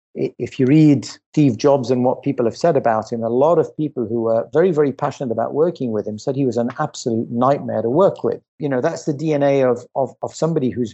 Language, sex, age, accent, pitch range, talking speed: English, male, 50-69, British, 120-150 Hz, 240 wpm